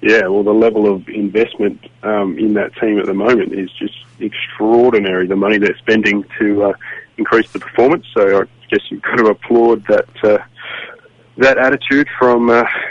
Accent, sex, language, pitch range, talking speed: Australian, male, English, 100-115 Hz, 180 wpm